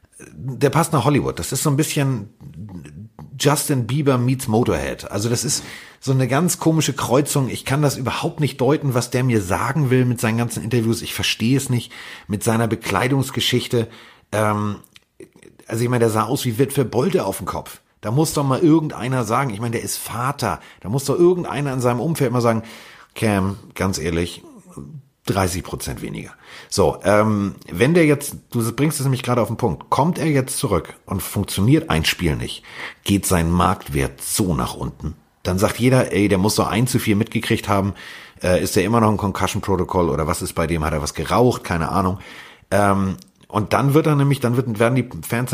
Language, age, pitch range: German, 40-59, 100-135 Hz